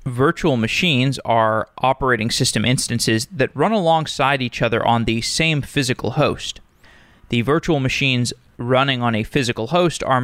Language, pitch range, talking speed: English, 120-150 Hz, 145 wpm